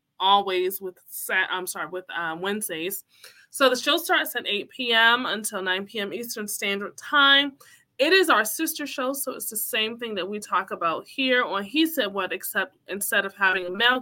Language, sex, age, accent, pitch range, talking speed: English, female, 20-39, American, 195-250 Hz, 195 wpm